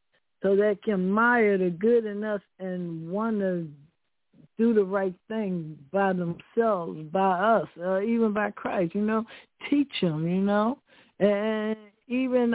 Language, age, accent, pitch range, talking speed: English, 60-79, American, 190-230 Hz, 145 wpm